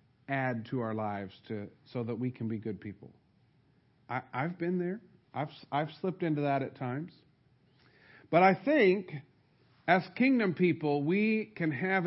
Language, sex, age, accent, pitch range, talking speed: English, male, 50-69, American, 135-180 Hz, 160 wpm